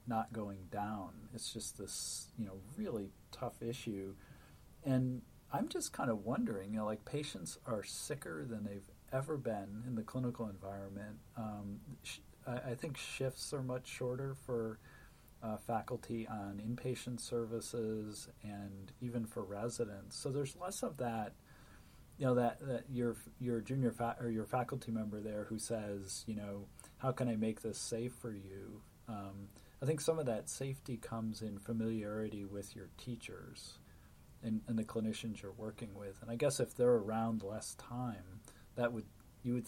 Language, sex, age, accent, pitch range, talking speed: English, male, 40-59, American, 100-120 Hz, 165 wpm